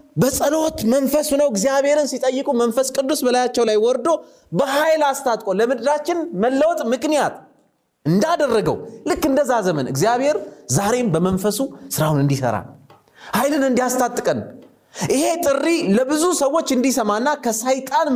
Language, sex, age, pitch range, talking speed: Amharic, male, 30-49, 205-285 Hz, 100 wpm